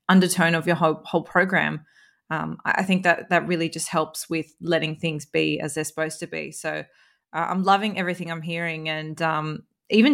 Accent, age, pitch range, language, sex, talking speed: Australian, 20-39, 160-185 Hz, English, female, 195 wpm